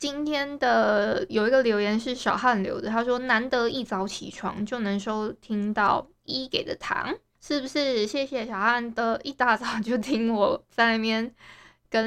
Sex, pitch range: female, 210-265 Hz